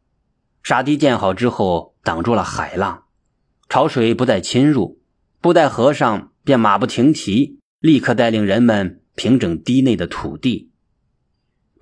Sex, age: male, 30-49